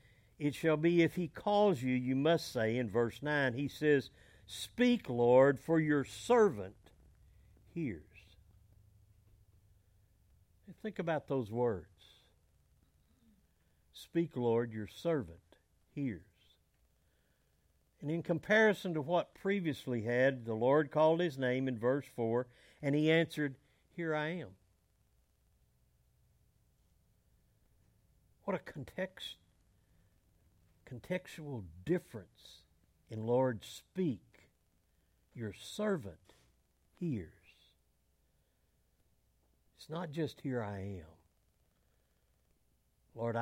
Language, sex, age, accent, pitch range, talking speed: English, male, 60-79, American, 90-140 Hz, 95 wpm